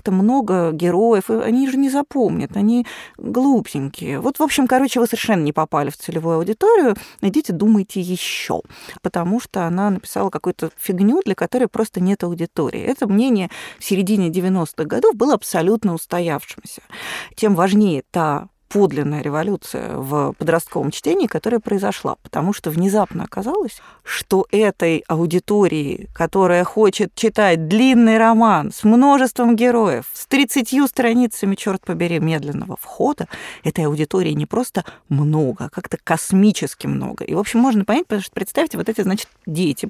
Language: Russian